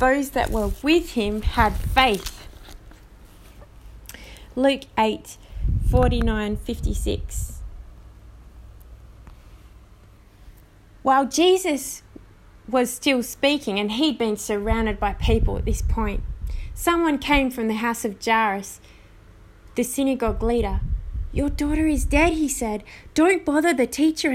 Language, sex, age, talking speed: English, female, 20-39, 110 wpm